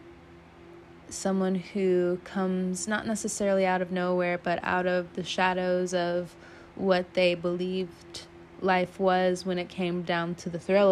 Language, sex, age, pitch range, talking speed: English, female, 20-39, 165-185 Hz, 145 wpm